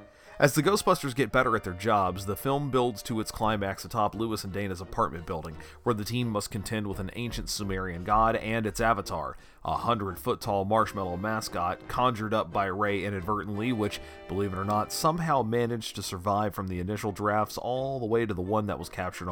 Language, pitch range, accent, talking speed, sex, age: English, 95-125 Hz, American, 205 wpm, male, 30-49